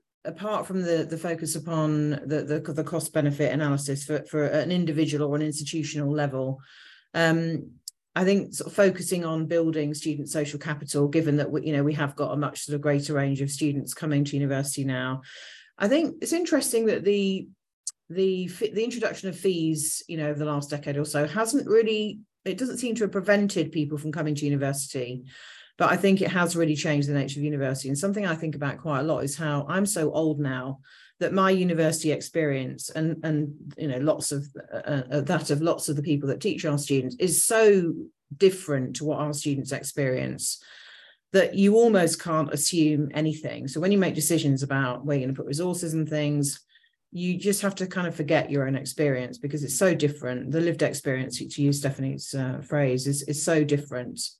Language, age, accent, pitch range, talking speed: English, 40-59, British, 145-170 Hz, 200 wpm